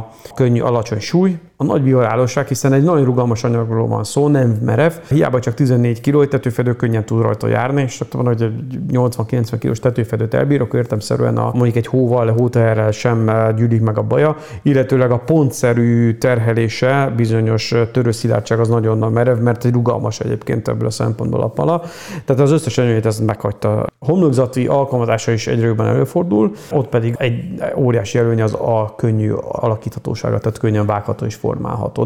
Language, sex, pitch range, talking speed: Hungarian, male, 110-130 Hz, 160 wpm